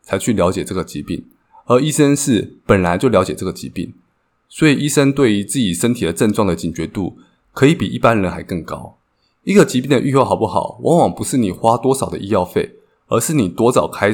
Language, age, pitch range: Chinese, 20-39, 90-130 Hz